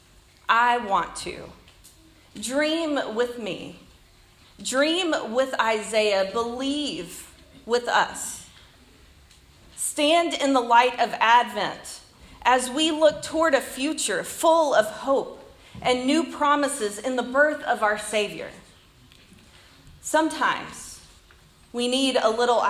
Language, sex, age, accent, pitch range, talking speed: English, female, 40-59, American, 200-270 Hz, 110 wpm